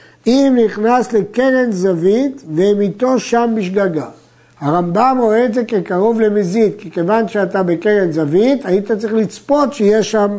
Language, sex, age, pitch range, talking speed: Hebrew, male, 60-79, 175-225 Hz, 135 wpm